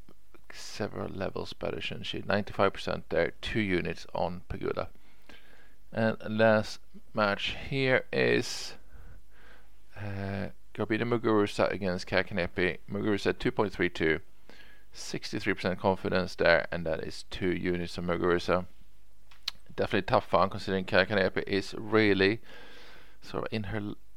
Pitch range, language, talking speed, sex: 90-110 Hz, English, 110 wpm, male